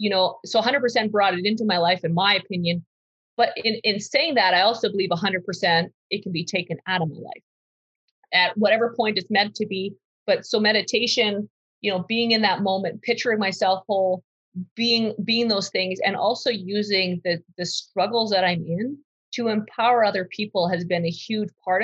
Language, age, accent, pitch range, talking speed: English, 30-49, American, 185-225 Hz, 190 wpm